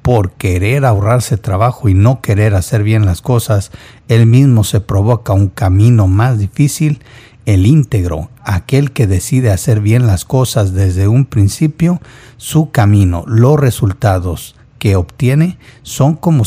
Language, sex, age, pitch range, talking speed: Spanish, male, 50-69, 105-130 Hz, 140 wpm